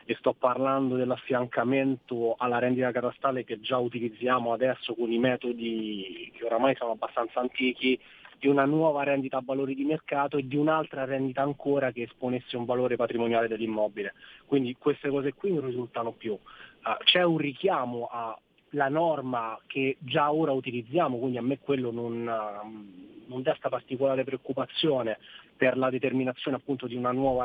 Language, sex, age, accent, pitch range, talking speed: Italian, male, 30-49, native, 125-140 Hz, 155 wpm